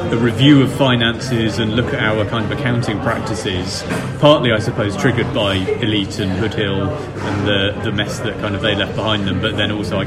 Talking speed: 215 wpm